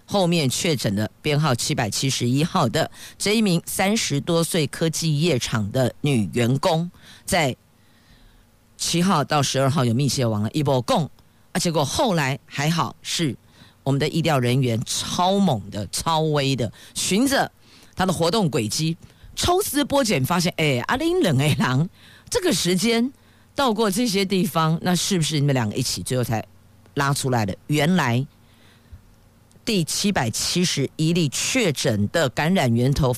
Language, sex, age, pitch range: Chinese, female, 50-69, 120-175 Hz